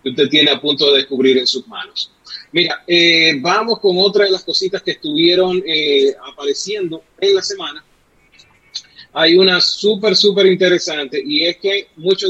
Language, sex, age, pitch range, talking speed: Spanish, male, 30-49, 145-200 Hz, 165 wpm